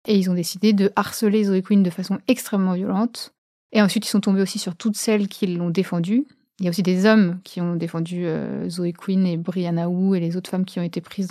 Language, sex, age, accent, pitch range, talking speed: French, female, 30-49, French, 180-205 Hz, 245 wpm